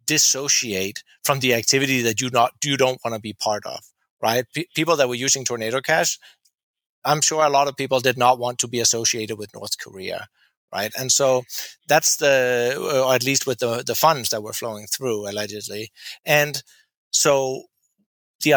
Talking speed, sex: 185 wpm, male